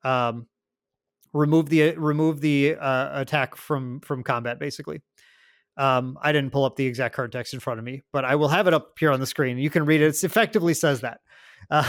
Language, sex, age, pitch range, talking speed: English, male, 30-49, 135-170 Hz, 220 wpm